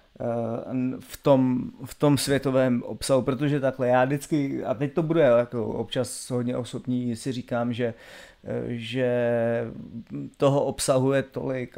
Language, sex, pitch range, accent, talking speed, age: Czech, male, 115-130 Hz, native, 120 wpm, 30-49